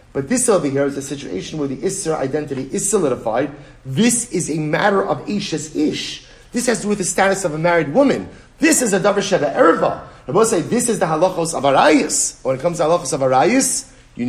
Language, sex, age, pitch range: English, male, 40-59, 135-185 Hz